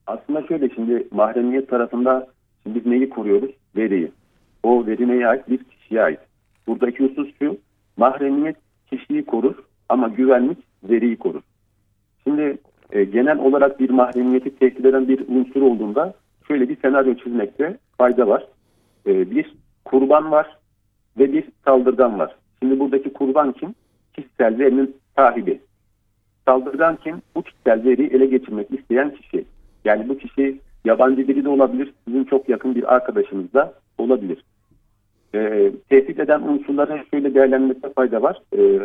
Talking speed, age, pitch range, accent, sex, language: 135 wpm, 50-69, 110-135 Hz, native, male, Turkish